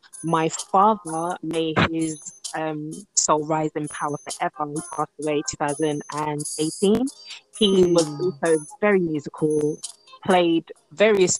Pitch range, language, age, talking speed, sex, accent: 155-185 Hz, English, 20-39, 110 wpm, female, British